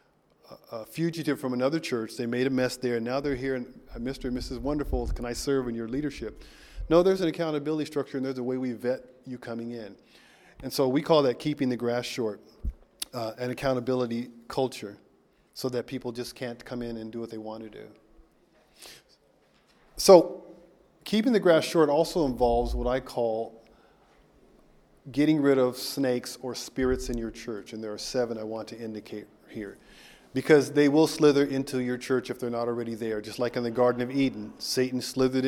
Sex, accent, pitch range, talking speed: male, American, 120-140 Hz, 195 wpm